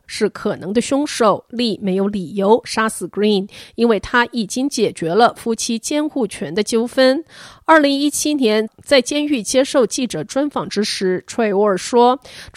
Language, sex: Chinese, female